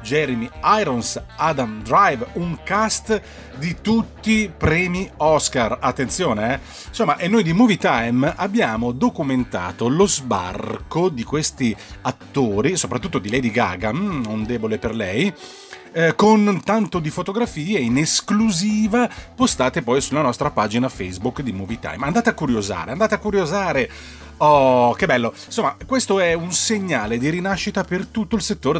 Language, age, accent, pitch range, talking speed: Italian, 30-49, native, 125-190 Hz, 145 wpm